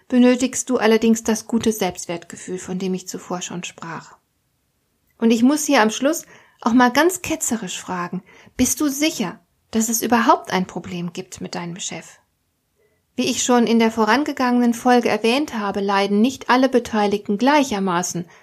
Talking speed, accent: 160 wpm, German